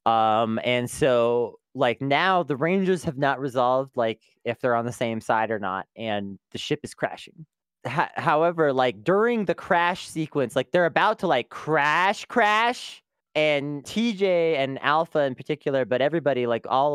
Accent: American